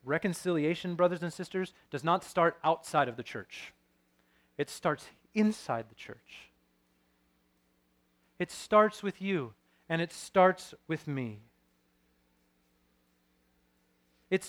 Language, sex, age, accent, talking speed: English, male, 30-49, American, 110 wpm